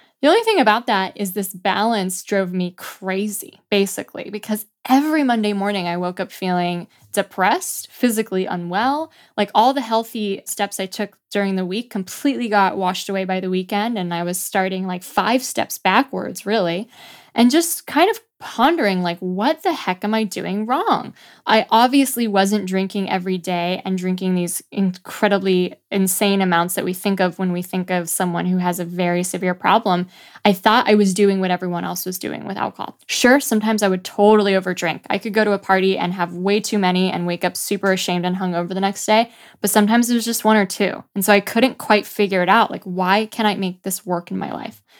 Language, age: English, 10-29